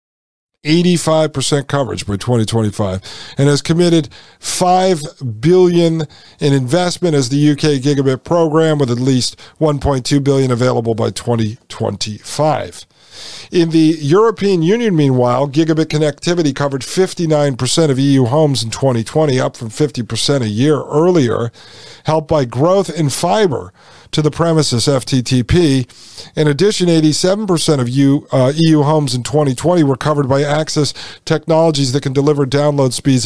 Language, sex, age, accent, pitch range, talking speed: English, male, 50-69, American, 125-160 Hz, 130 wpm